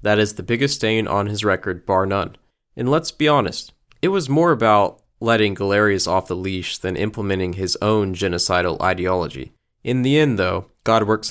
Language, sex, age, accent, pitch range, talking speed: English, male, 20-39, American, 95-120 Hz, 185 wpm